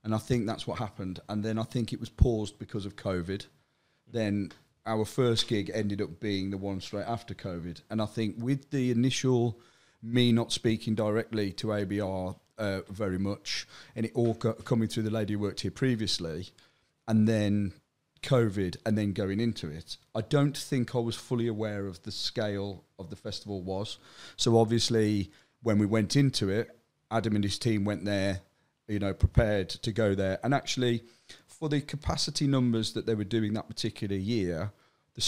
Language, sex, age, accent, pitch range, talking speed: English, male, 30-49, British, 100-120 Hz, 185 wpm